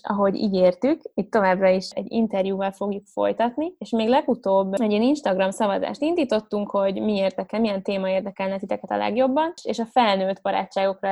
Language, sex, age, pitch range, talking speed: Hungarian, female, 20-39, 195-225 Hz, 165 wpm